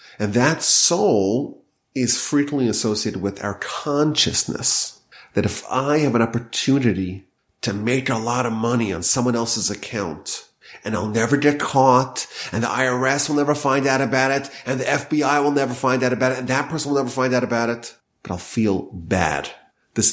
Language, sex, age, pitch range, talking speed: English, male, 30-49, 115-145 Hz, 185 wpm